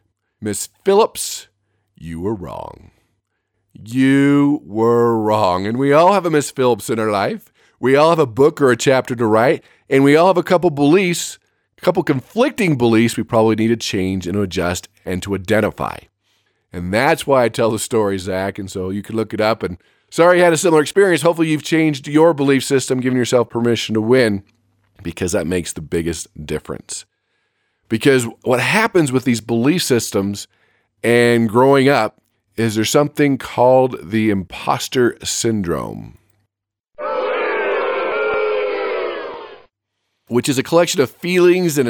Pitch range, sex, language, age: 110-150 Hz, male, English, 40-59